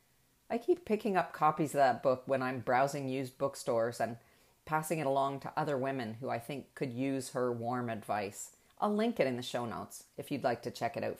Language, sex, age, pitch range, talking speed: English, female, 40-59, 130-180 Hz, 225 wpm